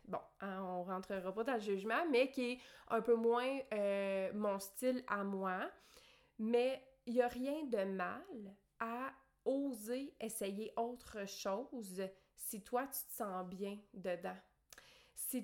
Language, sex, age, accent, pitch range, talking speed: French, female, 30-49, Canadian, 195-245 Hz, 150 wpm